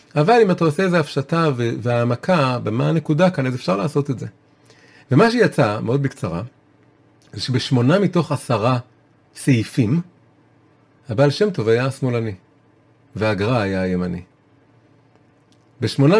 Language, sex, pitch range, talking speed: Hebrew, male, 110-150 Hz, 120 wpm